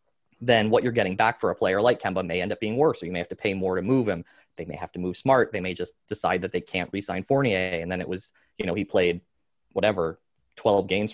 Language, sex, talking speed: English, male, 275 wpm